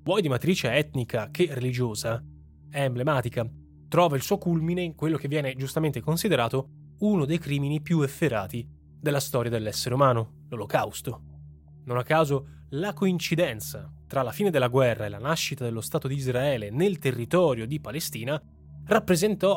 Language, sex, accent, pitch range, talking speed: Italian, male, native, 120-165 Hz, 155 wpm